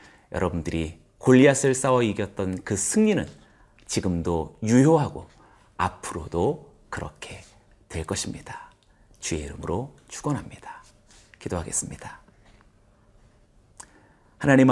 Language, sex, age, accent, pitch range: Korean, male, 30-49, native, 95-130 Hz